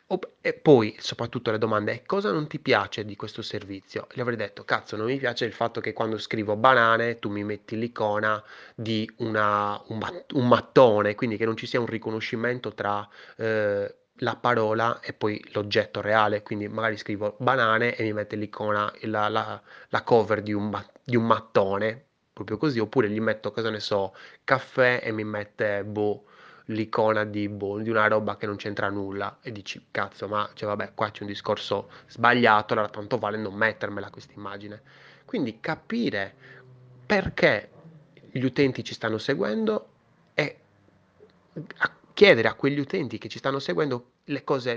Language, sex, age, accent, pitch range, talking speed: Italian, male, 20-39, native, 105-130 Hz, 175 wpm